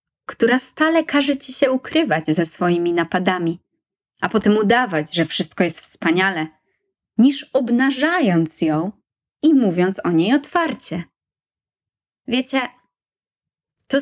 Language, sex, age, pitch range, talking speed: Polish, female, 20-39, 180-255 Hz, 110 wpm